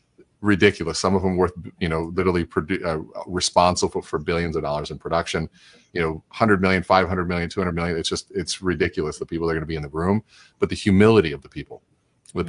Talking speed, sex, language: 220 wpm, male, English